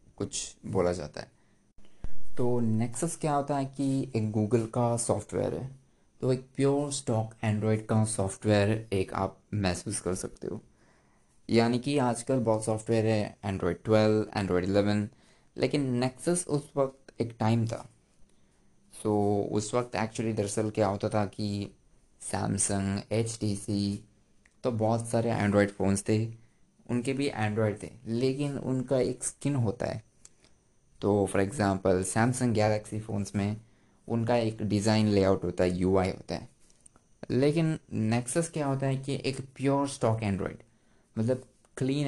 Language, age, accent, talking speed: Hindi, 20-39, native, 145 wpm